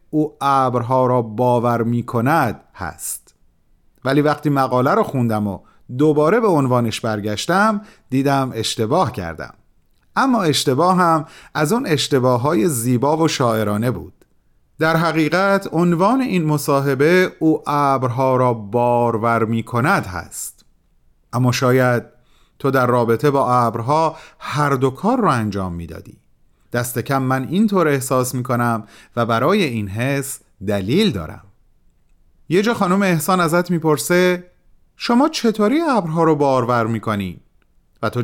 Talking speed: 135 wpm